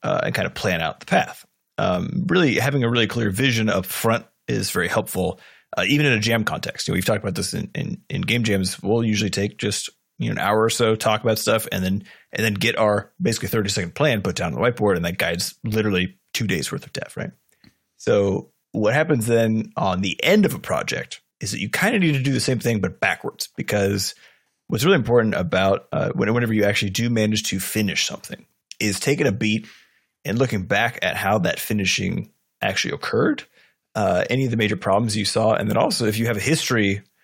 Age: 30-49